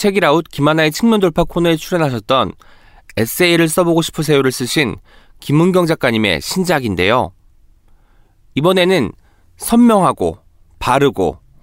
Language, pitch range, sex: Korean, 125-195 Hz, male